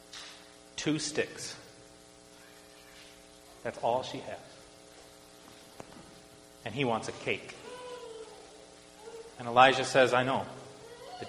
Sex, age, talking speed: male, 30-49, 90 wpm